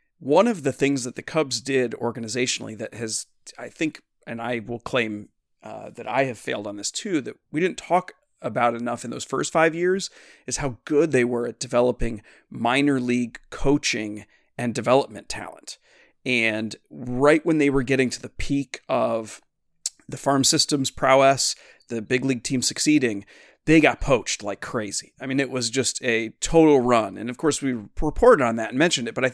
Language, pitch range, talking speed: English, 120-145 Hz, 190 wpm